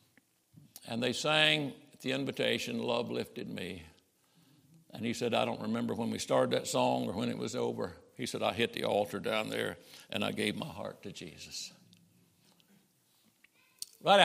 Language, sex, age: English, male, 60-79